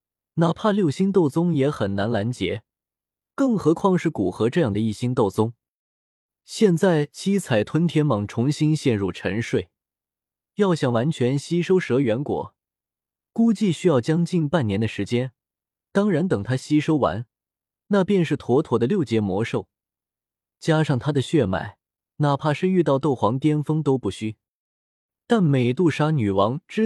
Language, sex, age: Chinese, male, 20-39